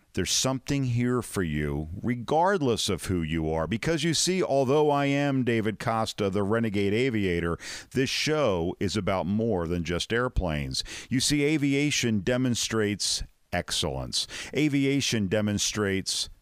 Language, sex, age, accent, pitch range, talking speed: English, male, 50-69, American, 90-125 Hz, 130 wpm